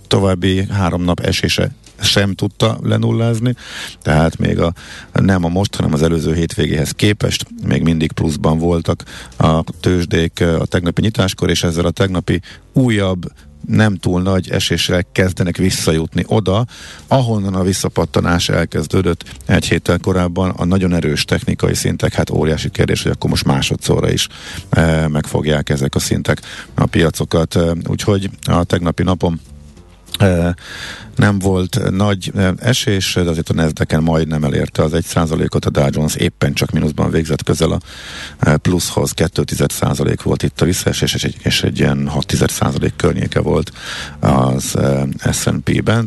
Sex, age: male, 50-69